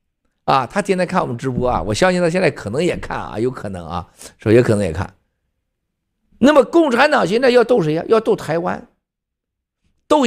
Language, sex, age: Chinese, male, 50-69